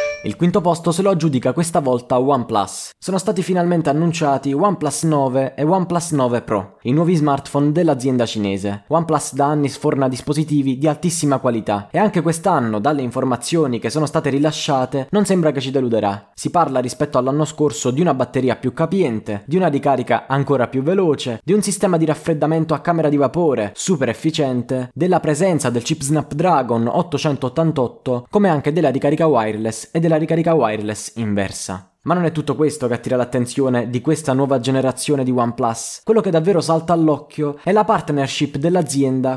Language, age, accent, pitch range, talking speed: Italian, 20-39, native, 125-160 Hz, 170 wpm